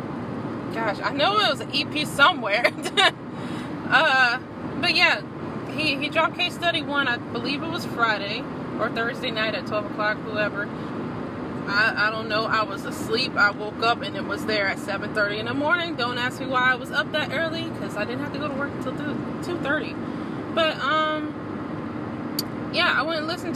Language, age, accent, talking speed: English, 20-39, American, 190 wpm